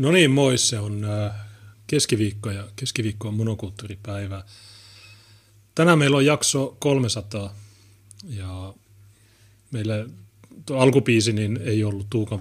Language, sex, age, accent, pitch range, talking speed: Finnish, male, 30-49, native, 105-120 Hz, 110 wpm